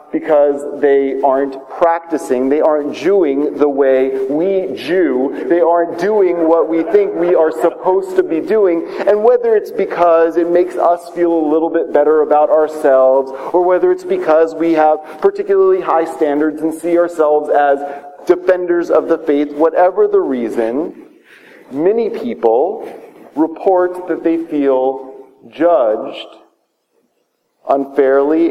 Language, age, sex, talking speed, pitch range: English, 40-59, male, 135 wpm, 135-180 Hz